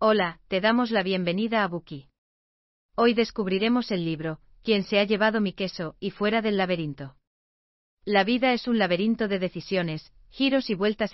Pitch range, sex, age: 165-215 Hz, female, 40-59